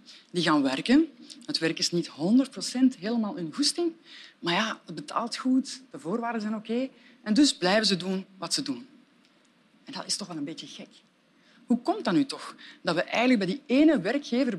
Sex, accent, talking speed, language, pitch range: female, Dutch, 200 wpm, Dutch, 200-280 Hz